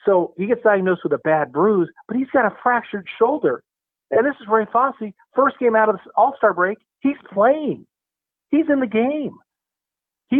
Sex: male